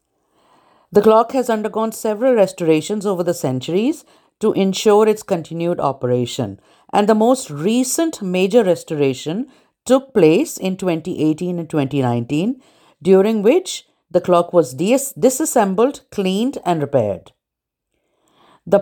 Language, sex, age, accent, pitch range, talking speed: English, female, 50-69, Indian, 145-205 Hz, 120 wpm